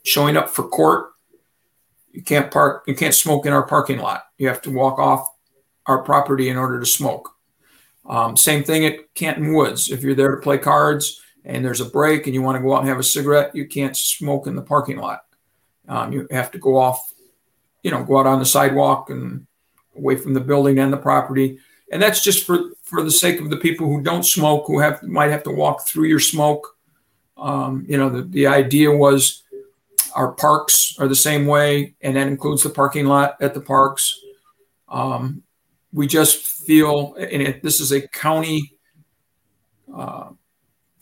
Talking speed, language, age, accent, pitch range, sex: 195 wpm, English, 50-69, American, 135-155 Hz, male